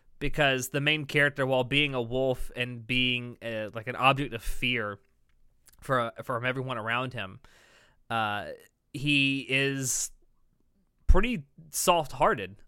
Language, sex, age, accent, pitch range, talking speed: English, male, 20-39, American, 110-140 Hz, 125 wpm